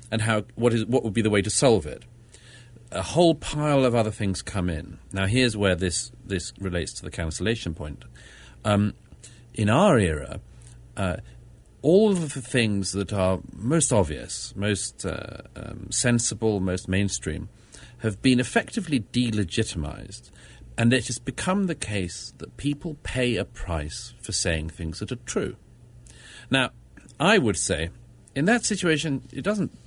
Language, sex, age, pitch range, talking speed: English, male, 40-59, 90-120 Hz, 160 wpm